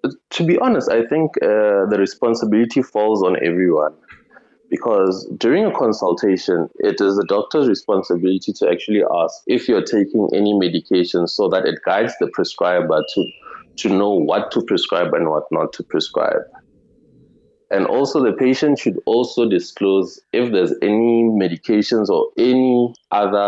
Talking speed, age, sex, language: 150 wpm, 20-39, male, English